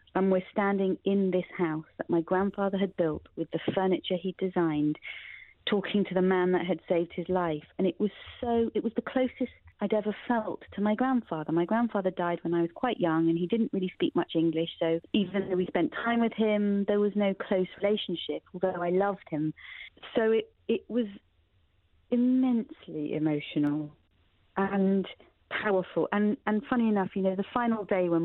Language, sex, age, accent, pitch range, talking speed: English, female, 40-59, British, 170-215 Hz, 190 wpm